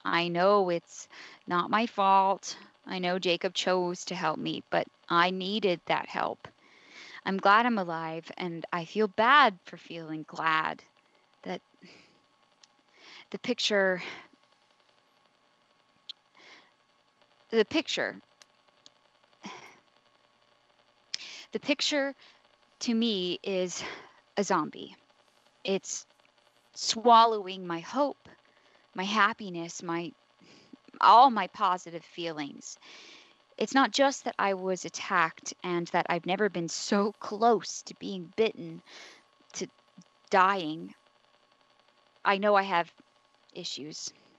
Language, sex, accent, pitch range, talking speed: English, female, American, 170-215 Hz, 105 wpm